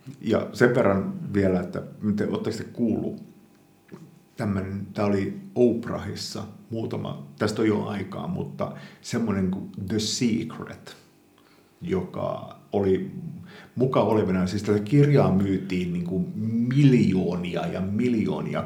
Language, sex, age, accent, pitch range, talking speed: Finnish, male, 50-69, native, 100-145 Hz, 110 wpm